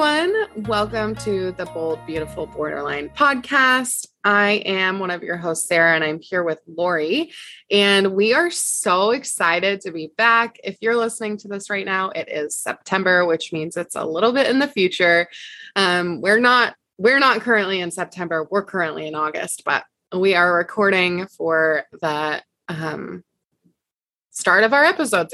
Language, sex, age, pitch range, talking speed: English, female, 20-39, 165-220 Hz, 165 wpm